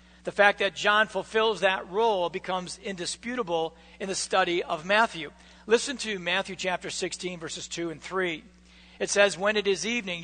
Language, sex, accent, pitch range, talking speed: English, male, American, 170-200 Hz, 170 wpm